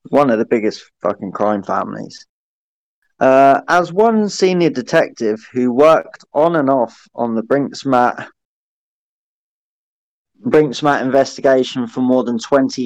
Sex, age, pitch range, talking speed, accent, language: male, 20-39, 120-145 Hz, 120 wpm, British, English